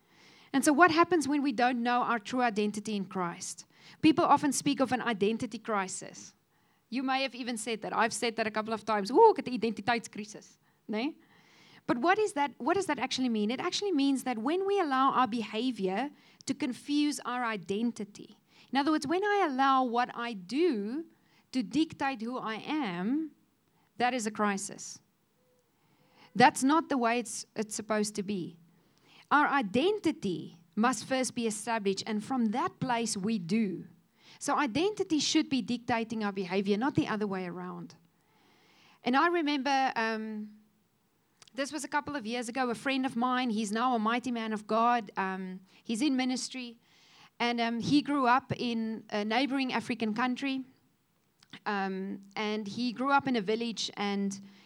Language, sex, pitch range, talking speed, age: English, female, 215-275 Hz, 170 wpm, 40-59